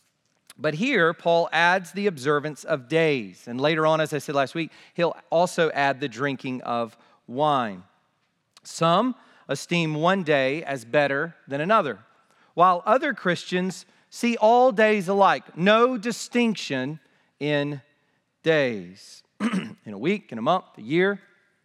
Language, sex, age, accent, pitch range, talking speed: English, male, 40-59, American, 145-195 Hz, 140 wpm